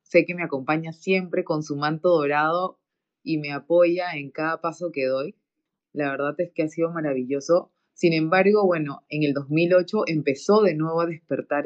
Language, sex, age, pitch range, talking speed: Spanish, female, 20-39, 155-200 Hz, 180 wpm